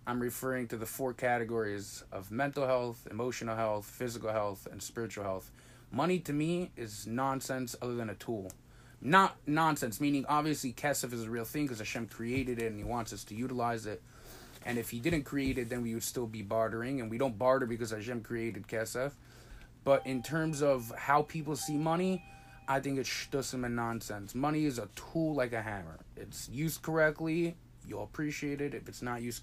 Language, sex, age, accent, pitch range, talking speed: English, male, 20-39, American, 115-145 Hz, 195 wpm